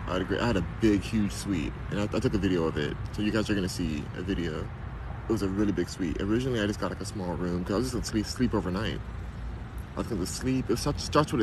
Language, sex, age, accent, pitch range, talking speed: English, male, 20-39, American, 90-110 Hz, 285 wpm